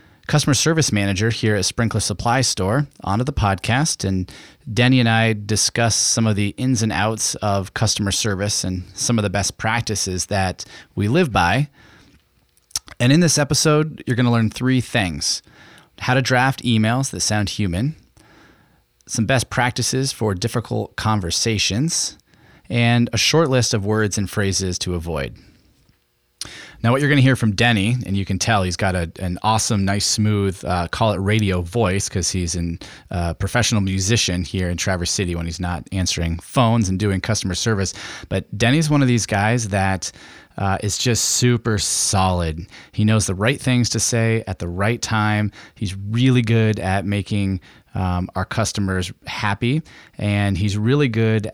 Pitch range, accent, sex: 95-120 Hz, American, male